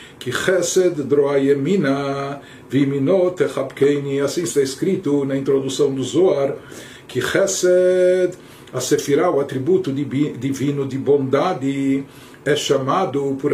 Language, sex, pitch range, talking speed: Portuguese, male, 135-180 Hz, 100 wpm